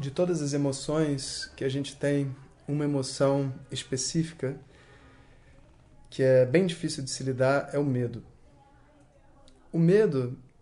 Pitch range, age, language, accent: 140-180 Hz, 20-39, Portuguese, Brazilian